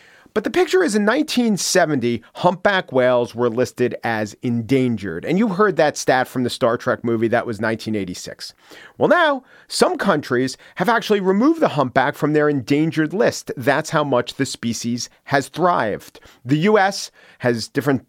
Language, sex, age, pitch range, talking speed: English, male, 40-59, 120-155 Hz, 165 wpm